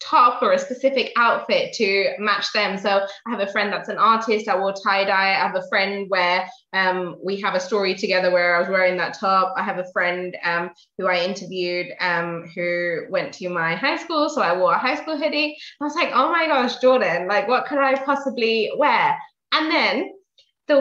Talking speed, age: 215 wpm, 20-39